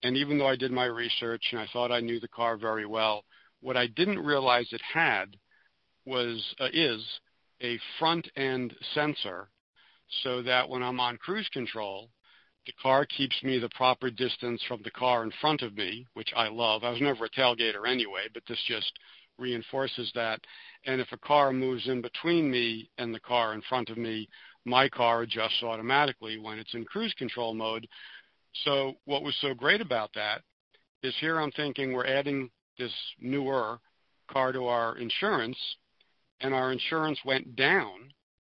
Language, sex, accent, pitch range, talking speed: English, male, American, 115-135 Hz, 175 wpm